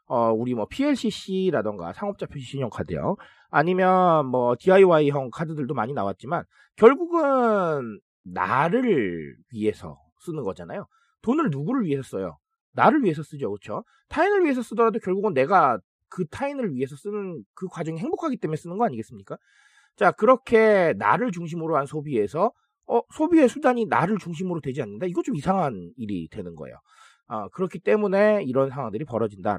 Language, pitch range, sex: Korean, 140-220 Hz, male